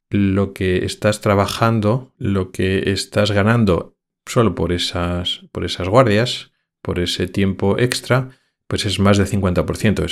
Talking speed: 135 wpm